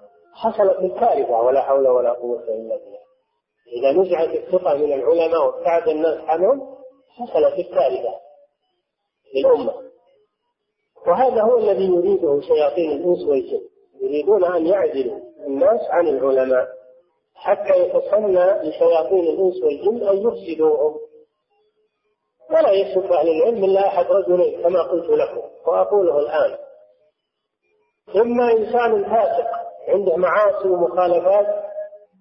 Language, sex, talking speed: Arabic, male, 105 wpm